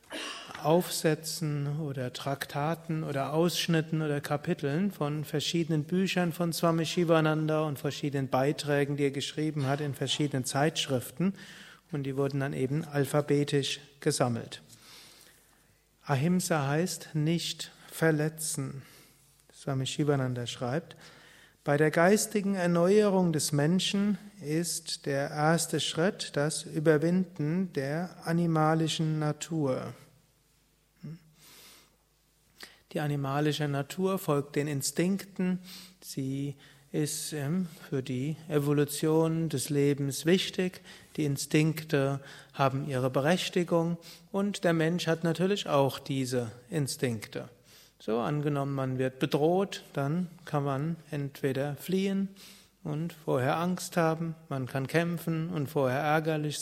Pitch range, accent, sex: 140-170 Hz, German, male